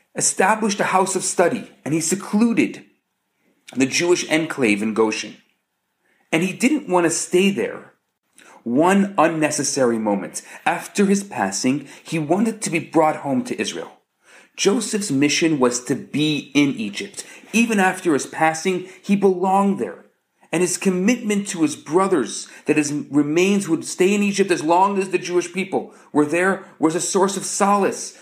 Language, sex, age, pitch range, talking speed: English, male, 40-59, 150-200 Hz, 155 wpm